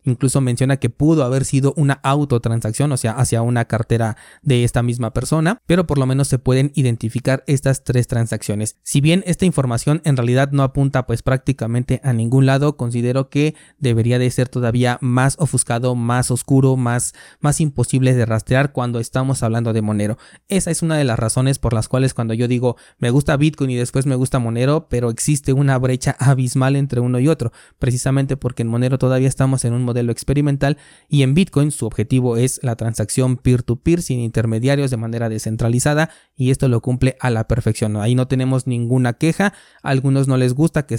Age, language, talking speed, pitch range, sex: 20-39, Spanish, 190 wpm, 120-140 Hz, male